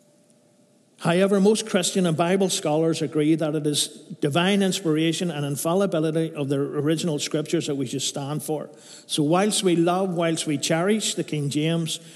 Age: 50-69